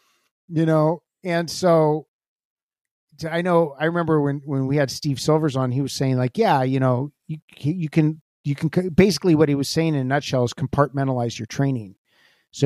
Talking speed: 190 wpm